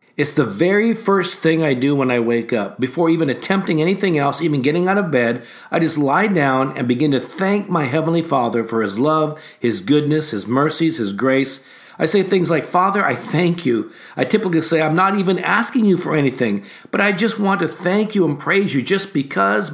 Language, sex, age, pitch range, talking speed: English, male, 50-69, 140-195 Hz, 215 wpm